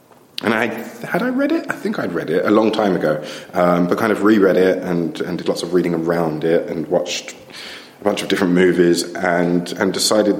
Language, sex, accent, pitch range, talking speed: English, male, British, 85-105 Hz, 225 wpm